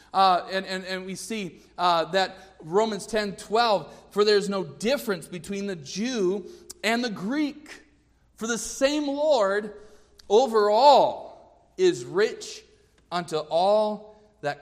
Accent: American